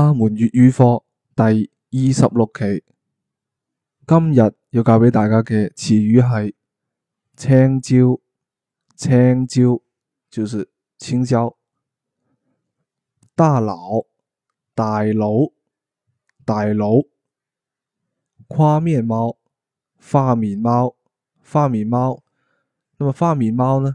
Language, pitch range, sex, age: Chinese, 115-140 Hz, male, 20-39